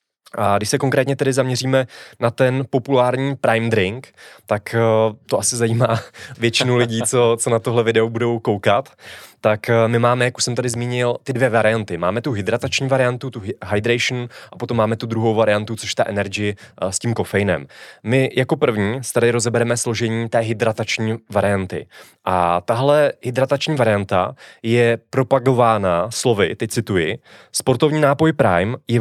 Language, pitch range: Czech, 110-125 Hz